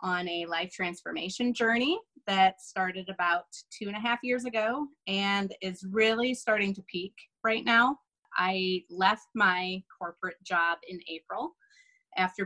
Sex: female